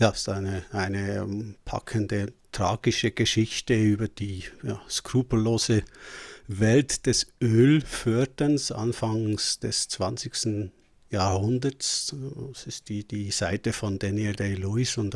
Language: German